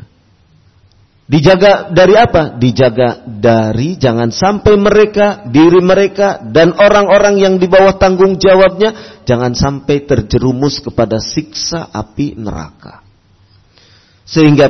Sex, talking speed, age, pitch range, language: male, 100 wpm, 40-59, 110-155 Hz, Indonesian